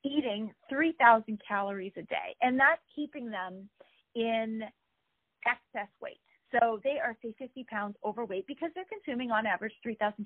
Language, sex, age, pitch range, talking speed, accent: English, female, 40-59, 205-270 Hz, 145 wpm, American